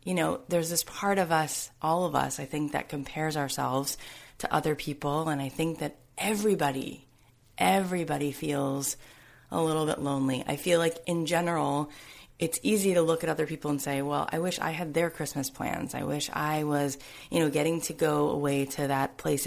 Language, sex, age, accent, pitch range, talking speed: English, female, 30-49, American, 145-175 Hz, 195 wpm